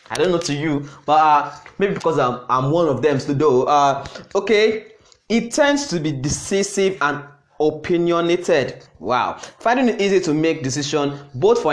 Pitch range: 140-170 Hz